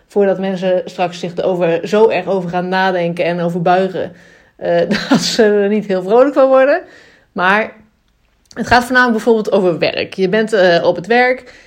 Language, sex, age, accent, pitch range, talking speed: Dutch, female, 30-49, Dutch, 175-215 Hz, 180 wpm